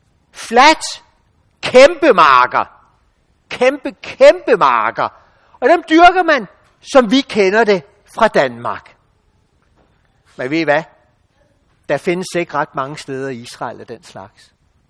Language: Danish